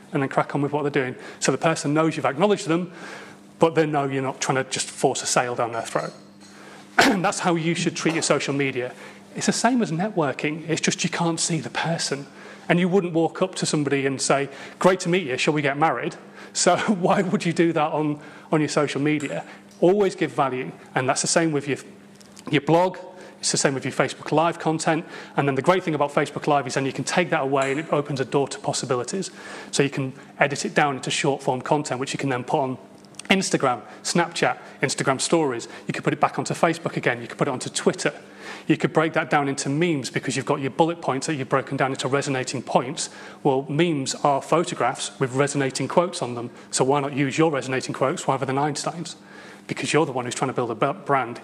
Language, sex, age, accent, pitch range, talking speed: English, male, 30-49, British, 135-165 Hz, 235 wpm